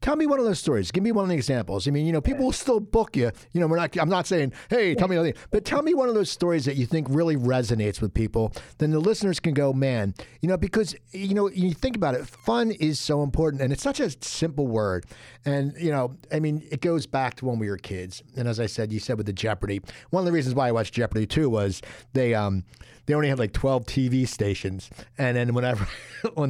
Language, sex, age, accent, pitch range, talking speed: English, male, 50-69, American, 120-165 Hz, 265 wpm